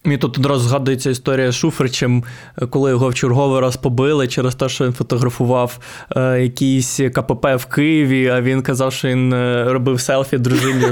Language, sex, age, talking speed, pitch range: Ukrainian, male, 20-39, 170 wpm, 125-145 Hz